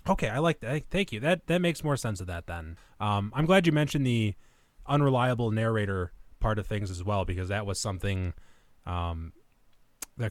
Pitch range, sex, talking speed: 100-135 Hz, male, 190 wpm